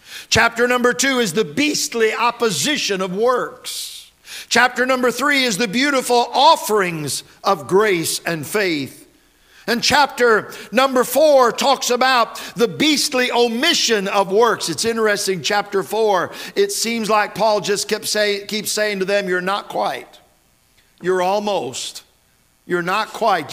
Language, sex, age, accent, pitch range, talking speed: English, male, 50-69, American, 190-250 Hz, 135 wpm